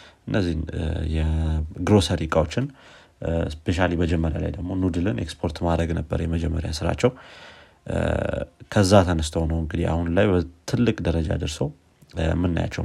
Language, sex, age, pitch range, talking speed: Amharic, male, 30-49, 80-95 Hz, 105 wpm